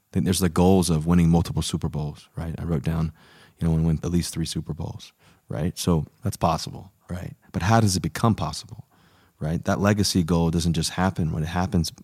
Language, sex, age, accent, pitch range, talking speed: English, male, 30-49, American, 80-95 Hz, 220 wpm